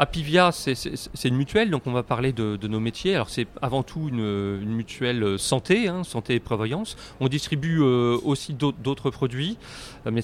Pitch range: 115-145 Hz